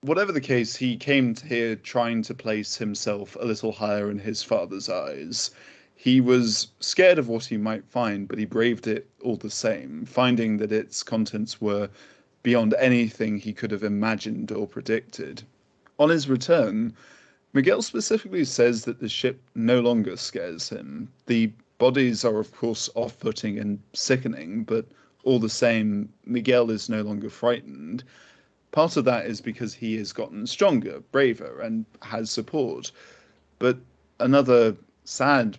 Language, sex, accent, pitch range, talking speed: English, male, British, 110-125 Hz, 155 wpm